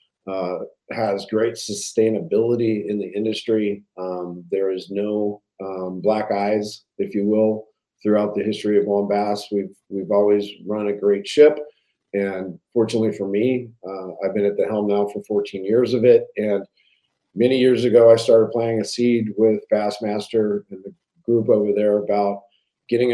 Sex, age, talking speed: male, 40-59, 165 wpm